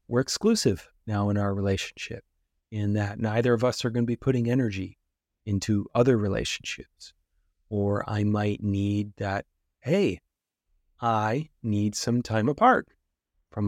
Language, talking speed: English, 140 wpm